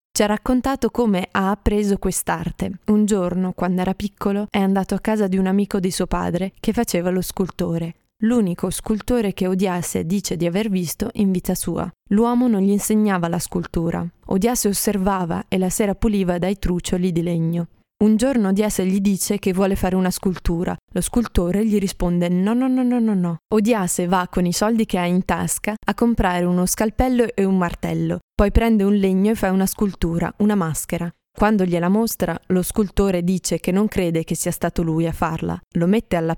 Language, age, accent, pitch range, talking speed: Italian, 20-39, native, 175-215 Hz, 190 wpm